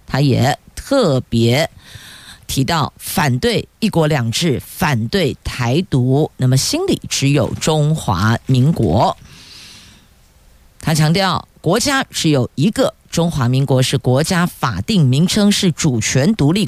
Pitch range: 125-170 Hz